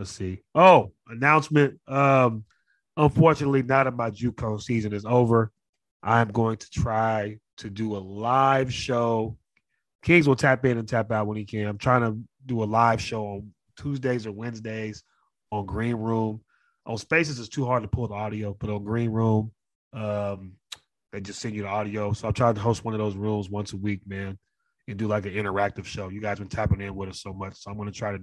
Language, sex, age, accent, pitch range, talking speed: English, male, 30-49, American, 95-110 Hz, 215 wpm